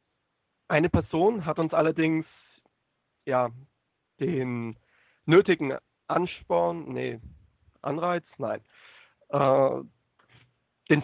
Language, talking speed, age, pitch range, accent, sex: German, 75 wpm, 40-59, 130-170 Hz, German, male